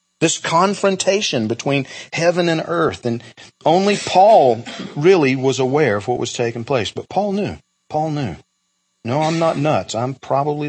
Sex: male